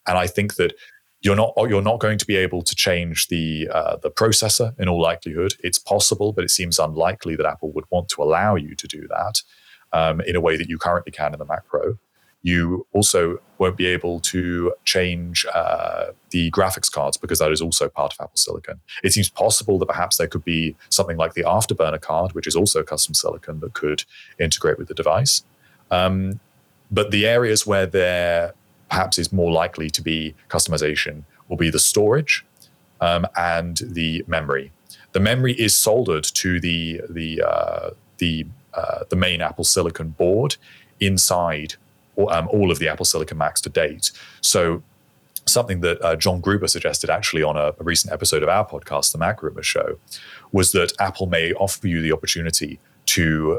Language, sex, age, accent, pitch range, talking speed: English, male, 30-49, British, 80-100 Hz, 180 wpm